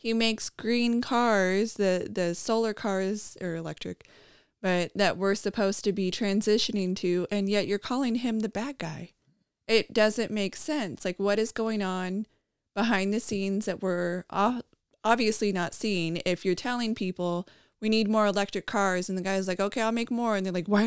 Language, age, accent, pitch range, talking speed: English, 20-39, American, 190-225 Hz, 185 wpm